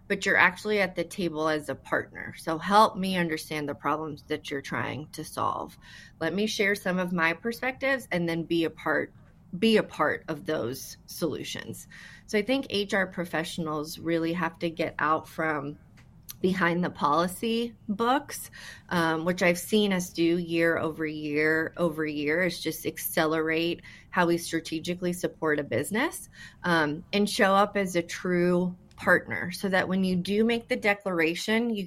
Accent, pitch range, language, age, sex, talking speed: American, 160-195 Hz, English, 30-49, female, 170 wpm